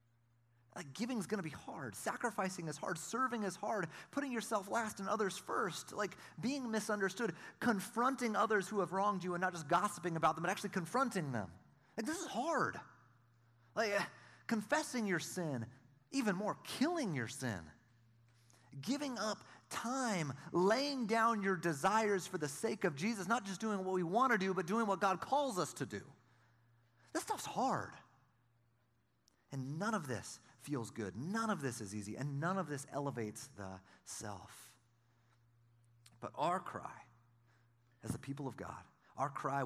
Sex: male